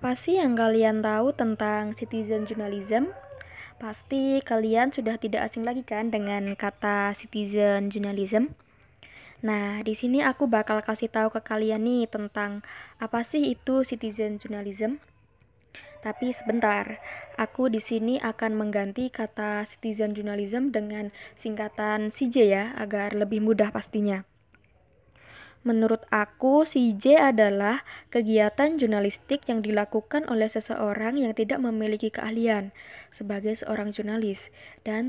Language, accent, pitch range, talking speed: Indonesian, native, 205-235 Hz, 120 wpm